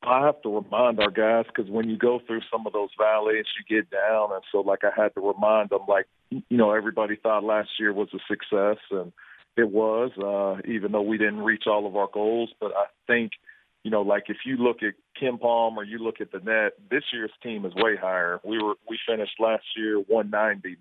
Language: English